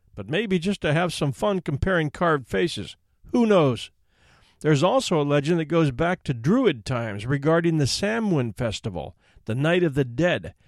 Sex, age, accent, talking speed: male, 50-69, American, 175 wpm